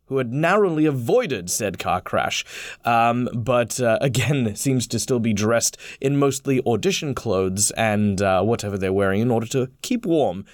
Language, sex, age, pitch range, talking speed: English, male, 20-39, 110-135 Hz, 170 wpm